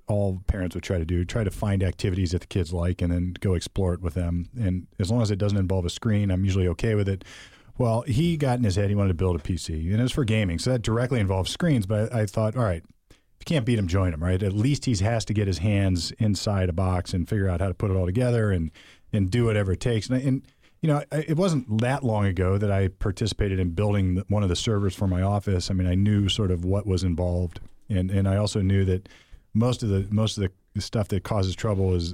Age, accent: 40-59, American